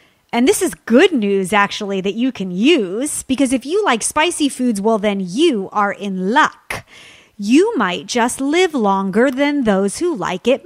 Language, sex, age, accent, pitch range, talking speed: English, female, 30-49, American, 205-265 Hz, 180 wpm